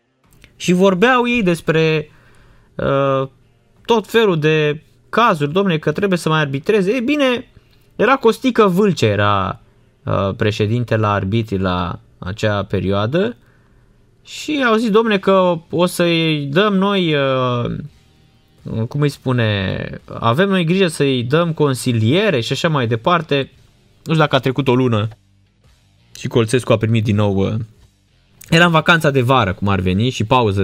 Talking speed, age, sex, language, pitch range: 145 wpm, 20-39, male, Romanian, 110-165 Hz